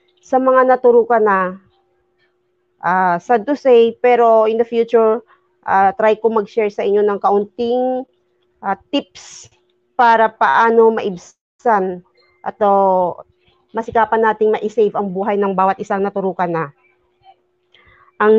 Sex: female